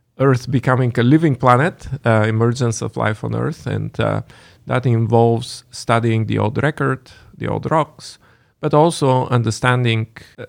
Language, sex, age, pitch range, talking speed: English, male, 40-59, 110-130 Hz, 150 wpm